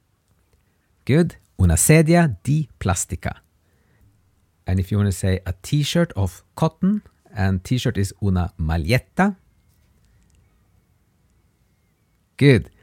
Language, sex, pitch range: English, male, 95-140 Hz